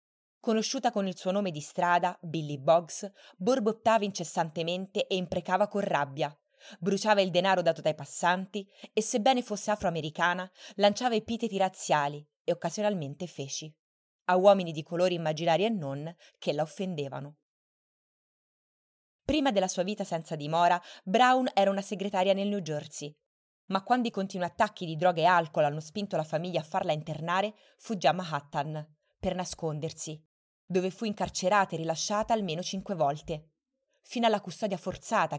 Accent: native